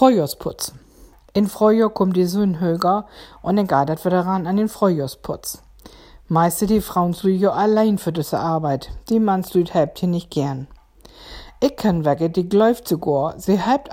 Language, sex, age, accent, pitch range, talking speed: German, female, 50-69, German, 165-210 Hz, 155 wpm